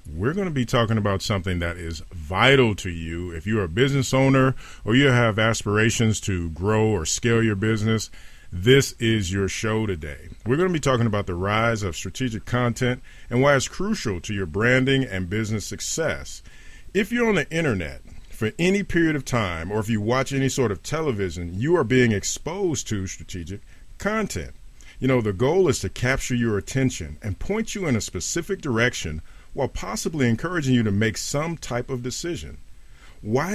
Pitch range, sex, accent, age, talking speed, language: 100-135 Hz, male, American, 40-59, 190 wpm, English